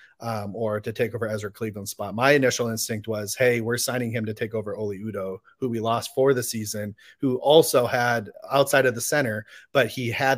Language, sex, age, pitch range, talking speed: English, male, 30-49, 115-135 Hz, 215 wpm